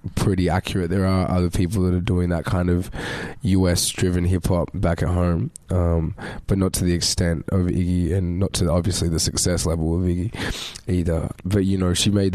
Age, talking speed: 20-39, 200 wpm